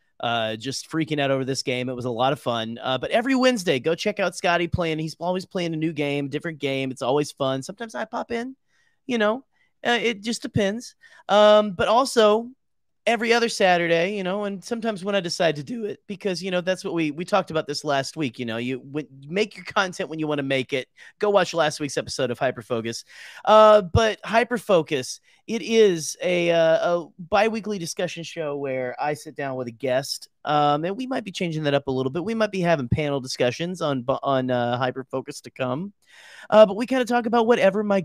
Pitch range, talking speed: 135-195 Hz, 225 wpm